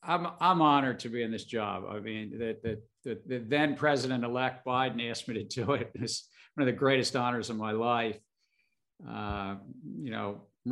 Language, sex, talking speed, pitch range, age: English, male, 190 wpm, 105-135 Hz, 50-69